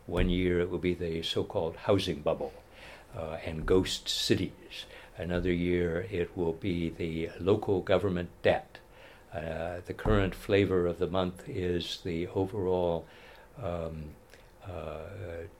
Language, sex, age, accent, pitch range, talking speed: English, male, 60-79, American, 85-100 Hz, 130 wpm